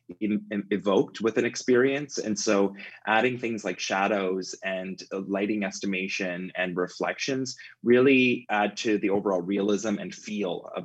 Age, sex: 20-39, male